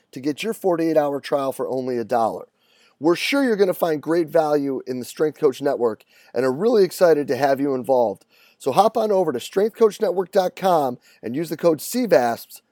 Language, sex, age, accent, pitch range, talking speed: English, male, 30-49, American, 135-180 Hz, 195 wpm